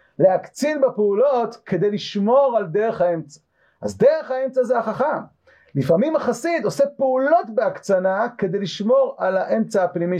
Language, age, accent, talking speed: Hebrew, 40-59, native, 130 wpm